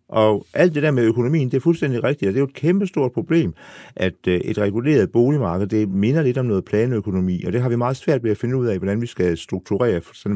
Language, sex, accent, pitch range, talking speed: Danish, male, native, 100-135 Hz, 250 wpm